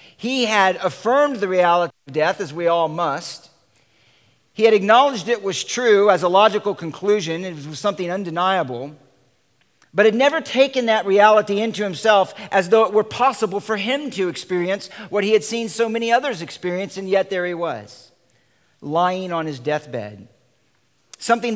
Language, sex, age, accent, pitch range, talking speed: English, male, 50-69, American, 155-205 Hz, 165 wpm